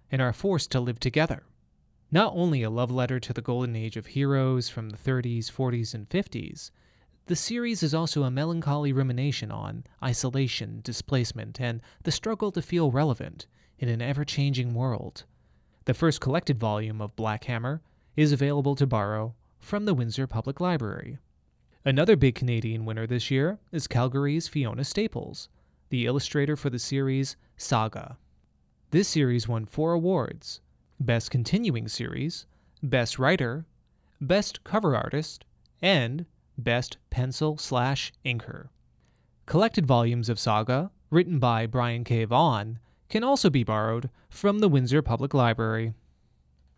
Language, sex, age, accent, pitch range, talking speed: English, male, 30-49, American, 115-150 Hz, 140 wpm